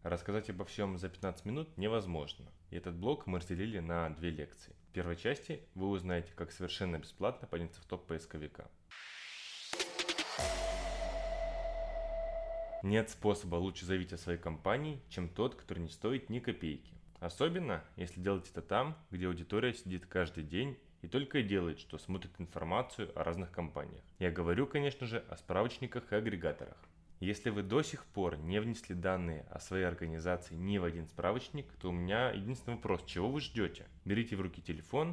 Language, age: Russian, 20-39